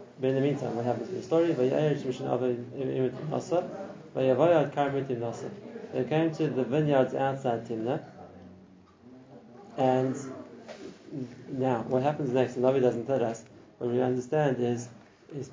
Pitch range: 125-140 Hz